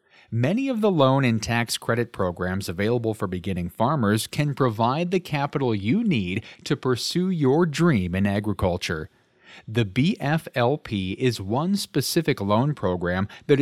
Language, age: English, 40-59